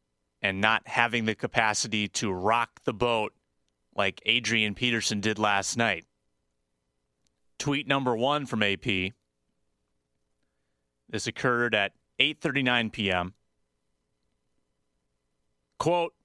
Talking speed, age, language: 95 wpm, 30-49, English